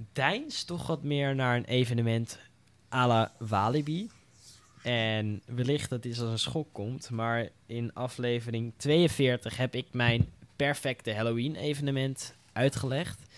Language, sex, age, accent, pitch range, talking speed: Dutch, male, 10-29, Dutch, 115-140 Hz, 125 wpm